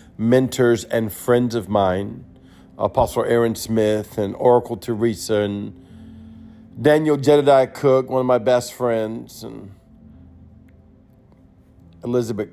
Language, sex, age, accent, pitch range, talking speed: English, male, 50-69, American, 90-125 Hz, 105 wpm